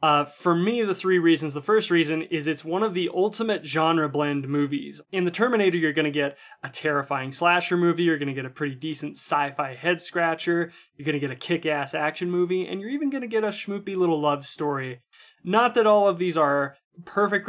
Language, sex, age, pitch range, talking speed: English, male, 20-39, 145-185 Hz, 220 wpm